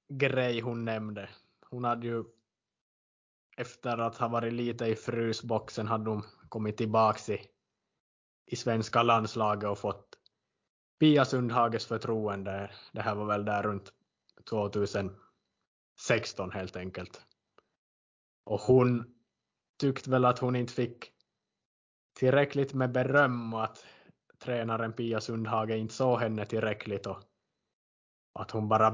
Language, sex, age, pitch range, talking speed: Swedish, male, 20-39, 105-125 Hz, 125 wpm